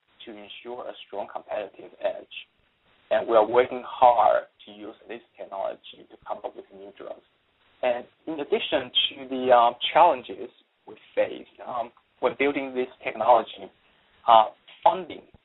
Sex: male